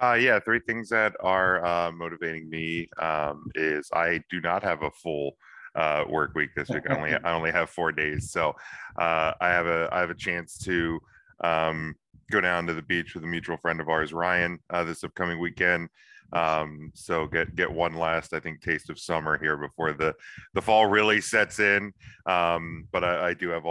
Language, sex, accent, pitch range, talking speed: English, male, American, 80-90 Hz, 205 wpm